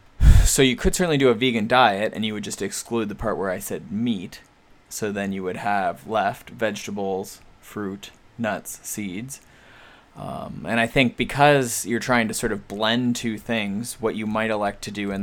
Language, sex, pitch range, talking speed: English, male, 100-115 Hz, 195 wpm